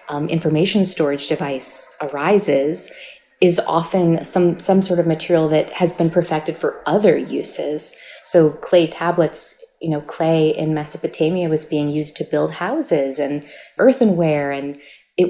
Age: 30-49